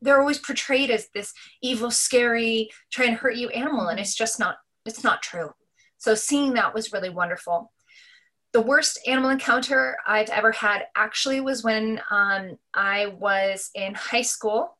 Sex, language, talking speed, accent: female, English, 165 wpm, American